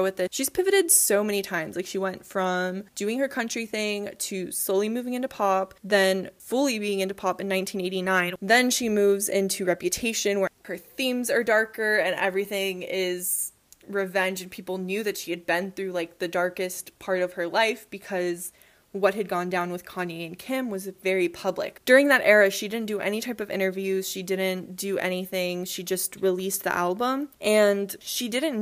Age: 20-39